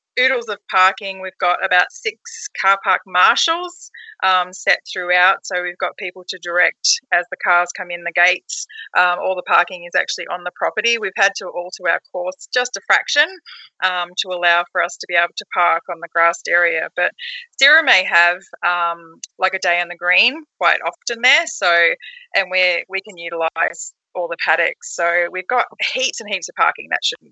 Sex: female